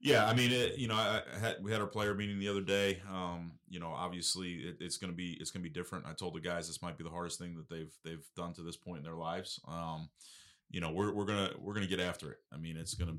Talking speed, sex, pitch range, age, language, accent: 285 wpm, male, 80-90 Hz, 30-49, English, American